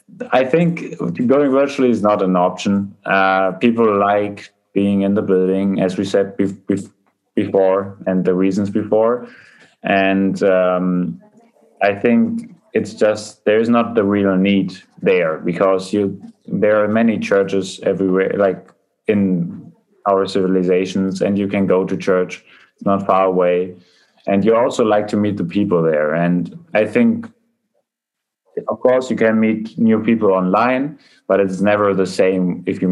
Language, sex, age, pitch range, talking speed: English, male, 20-39, 90-105 Hz, 155 wpm